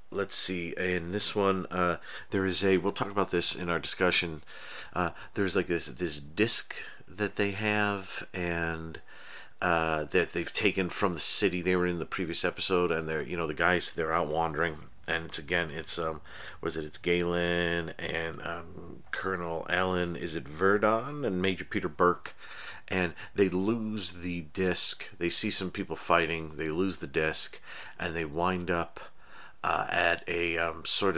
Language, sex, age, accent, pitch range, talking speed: English, male, 40-59, American, 85-95 Hz, 175 wpm